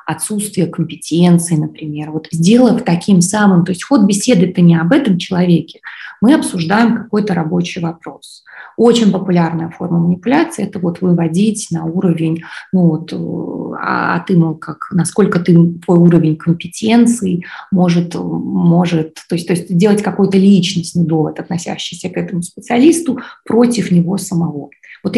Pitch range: 170-215 Hz